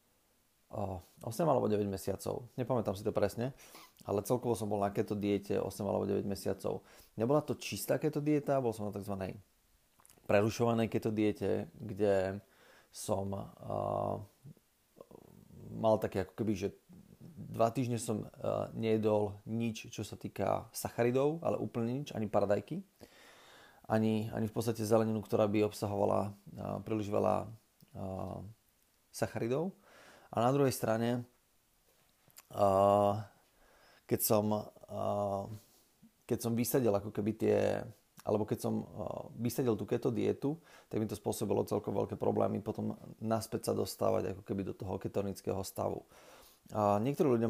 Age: 30-49